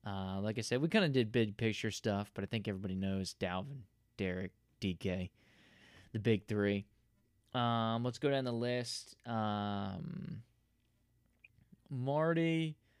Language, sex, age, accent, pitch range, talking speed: English, male, 20-39, American, 105-125 Hz, 140 wpm